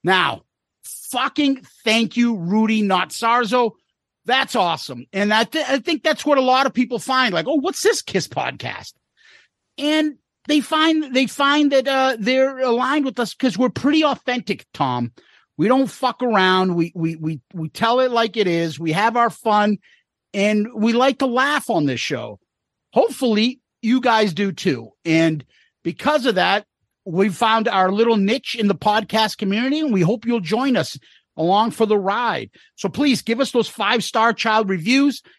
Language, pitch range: English, 200-265 Hz